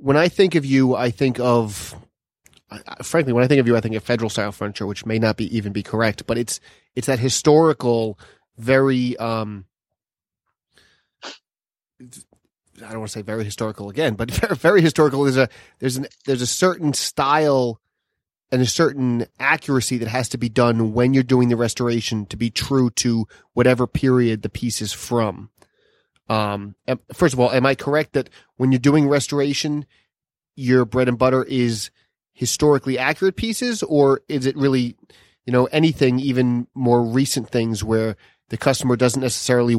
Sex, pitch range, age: male, 115-135 Hz, 30-49